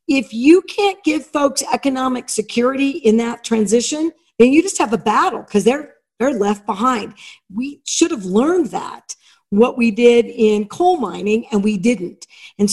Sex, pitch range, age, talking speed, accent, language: female, 220-265 Hz, 50-69, 170 wpm, American, English